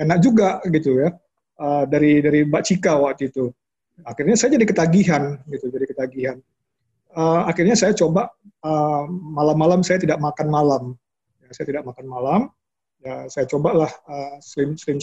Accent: native